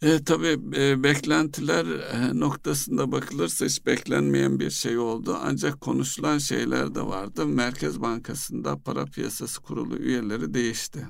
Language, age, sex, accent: Turkish, 60-79, male, native